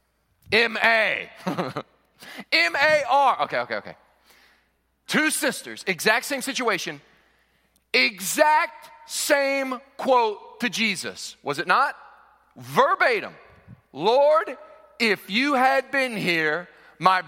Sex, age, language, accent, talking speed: male, 40-59, English, American, 90 wpm